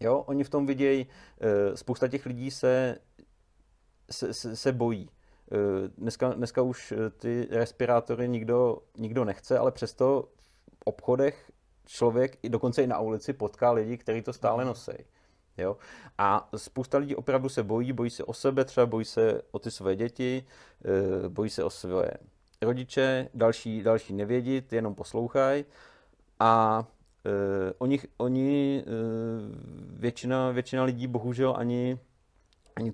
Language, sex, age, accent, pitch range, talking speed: Czech, male, 40-59, native, 110-125 Hz, 135 wpm